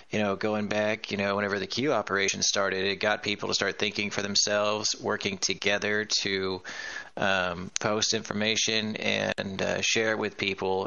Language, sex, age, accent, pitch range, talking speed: English, male, 30-49, American, 100-115 Hz, 165 wpm